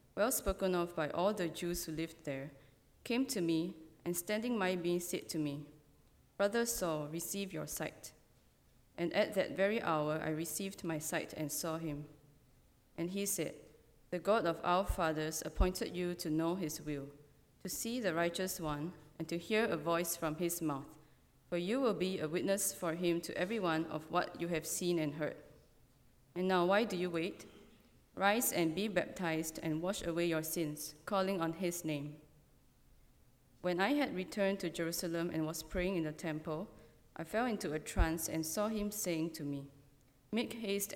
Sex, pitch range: female, 155-185 Hz